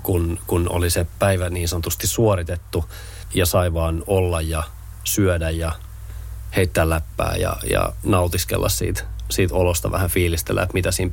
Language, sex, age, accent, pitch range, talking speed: Finnish, male, 30-49, native, 90-105 Hz, 150 wpm